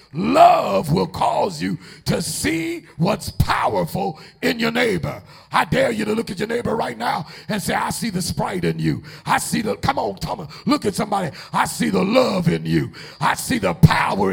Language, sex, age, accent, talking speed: English, male, 50-69, American, 205 wpm